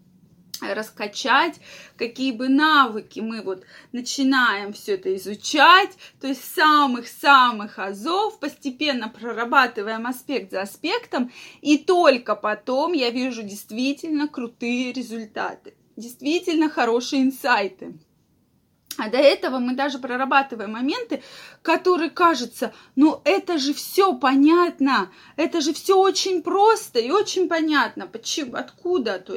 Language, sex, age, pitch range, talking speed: Russian, female, 20-39, 235-300 Hz, 110 wpm